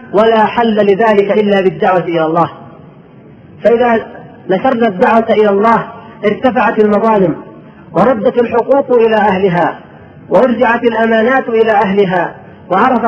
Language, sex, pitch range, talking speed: Arabic, female, 205-240 Hz, 105 wpm